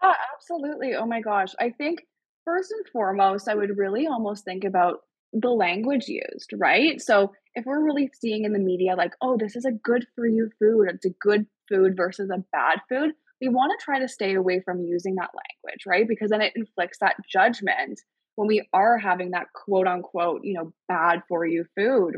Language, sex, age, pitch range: English, female, 20-39, 185-260 Hz